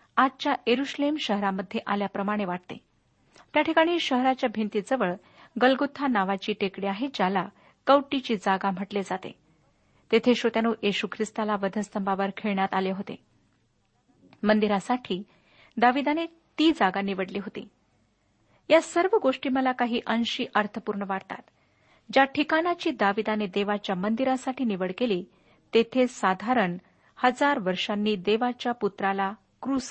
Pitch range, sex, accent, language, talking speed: 200-255 Hz, female, native, Marathi, 105 wpm